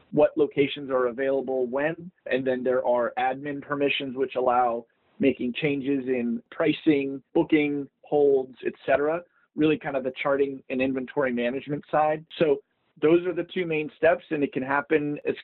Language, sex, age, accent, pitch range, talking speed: English, male, 30-49, American, 130-150 Hz, 160 wpm